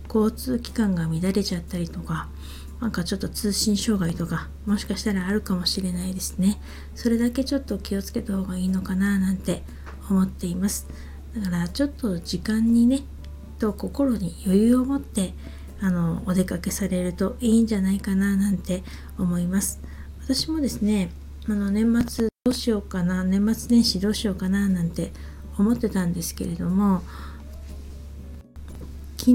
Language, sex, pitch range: Japanese, female, 170-215 Hz